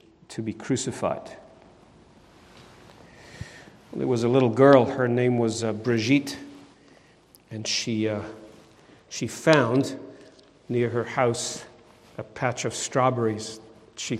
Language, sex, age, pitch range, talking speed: English, male, 50-69, 115-140 Hz, 115 wpm